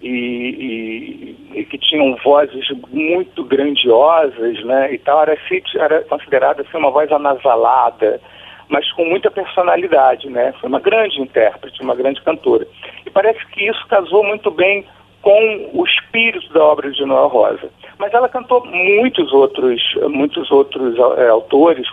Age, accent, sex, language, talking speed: 50-69, Brazilian, male, Portuguese, 130 wpm